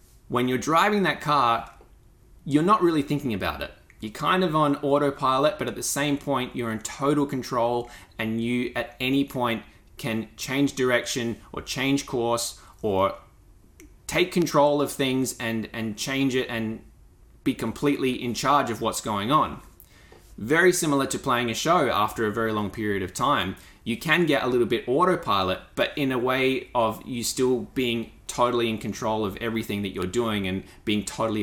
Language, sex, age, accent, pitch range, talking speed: English, male, 20-39, Australian, 105-135 Hz, 180 wpm